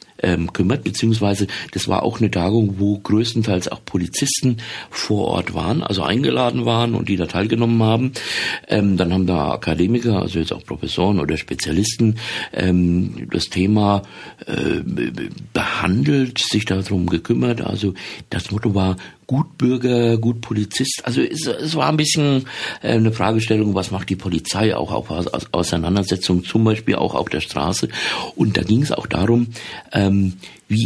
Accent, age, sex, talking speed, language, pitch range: German, 50-69, male, 145 wpm, English, 95-115 Hz